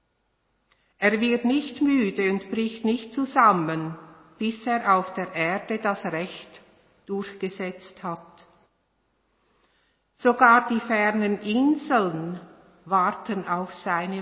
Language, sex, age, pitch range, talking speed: German, female, 60-79, 180-230 Hz, 100 wpm